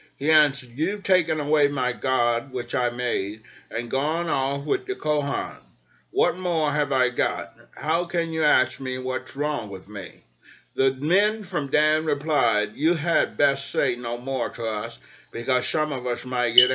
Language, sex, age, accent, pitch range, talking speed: English, male, 60-79, American, 125-155 Hz, 175 wpm